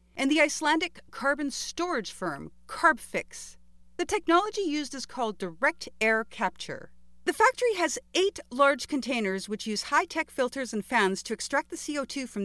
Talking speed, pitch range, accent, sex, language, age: 155 wpm, 220-330 Hz, American, female, English, 40-59